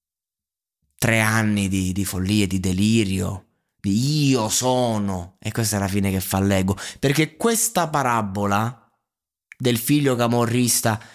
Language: Italian